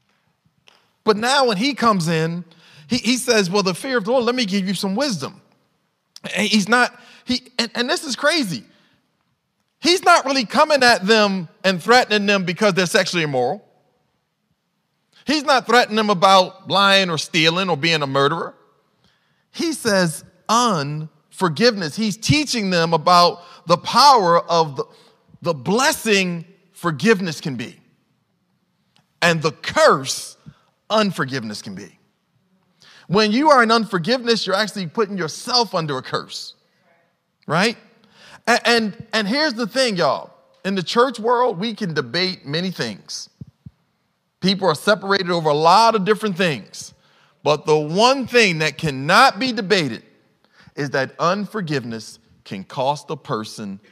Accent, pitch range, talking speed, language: American, 165-230 Hz, 140 wpm, English